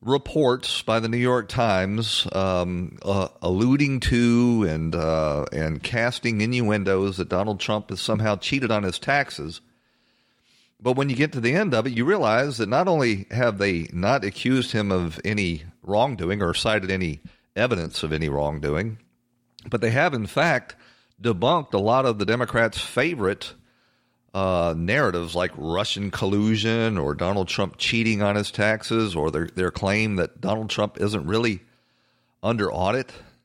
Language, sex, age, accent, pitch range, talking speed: English, male, 40-59, American, 95-120 Hz, 160 wpm